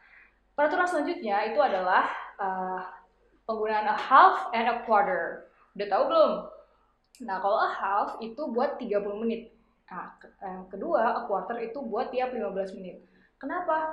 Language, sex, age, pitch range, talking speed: Indonesian, female, 20-39, 200-285 Hz, 150 wpm